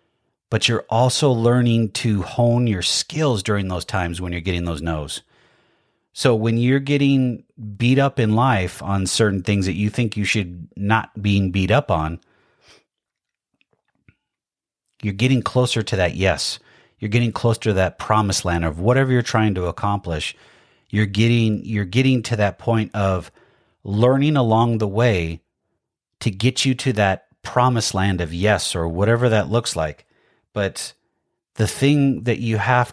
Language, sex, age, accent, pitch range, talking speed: English, male, 30-49, American, 95-120 Hz, 160 wpm